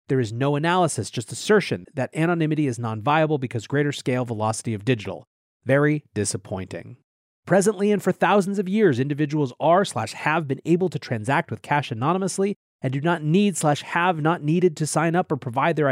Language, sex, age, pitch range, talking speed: English, male, 30-49, 125-165 Hz, 185 wpm